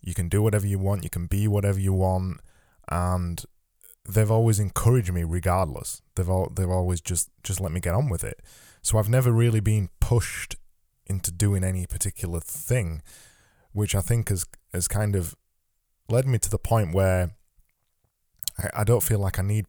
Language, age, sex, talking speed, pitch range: English, 20-39, male, 185 wpm, 90-105 Hz